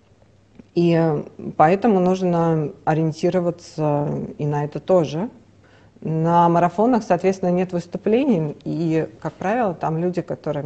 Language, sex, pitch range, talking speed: Russian, female, 155-185 Hz, 105 wpm